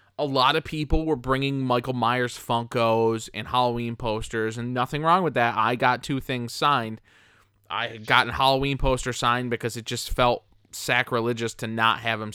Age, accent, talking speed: 20-39, American, 180 wpm